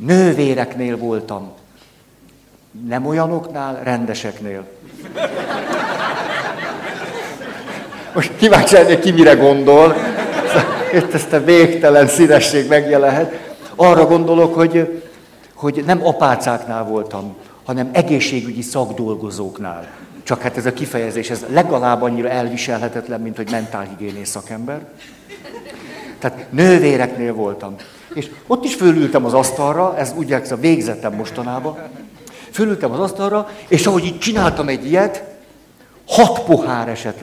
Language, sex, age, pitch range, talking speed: Hungarian, male, 60-79, 115-165 Hz, 105 wpm